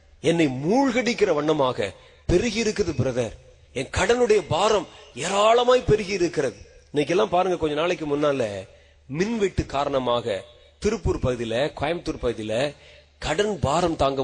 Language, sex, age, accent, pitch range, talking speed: Tamil, male, 30-49, native, 125-200 Hz, 95 wpm